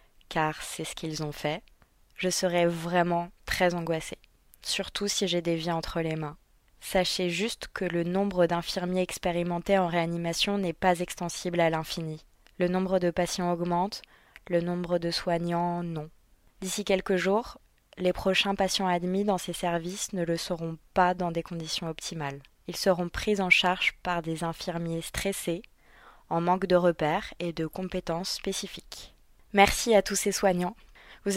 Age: 20-39